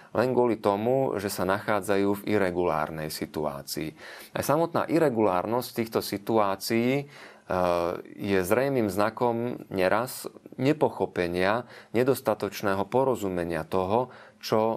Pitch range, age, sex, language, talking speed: 95-115 Hz, 30-49, male, Slovak, 95 wpm